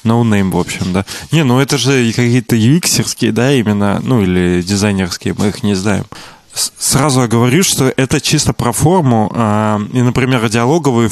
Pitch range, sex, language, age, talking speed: 110-135 Hz, male, Russian, 20-39, 165 wpm